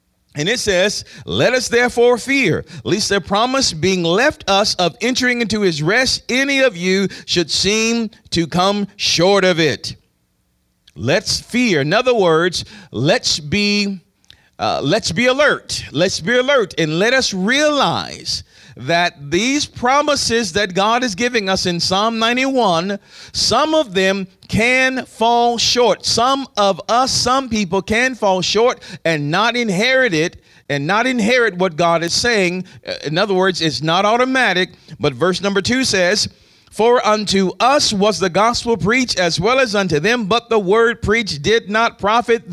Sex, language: male, English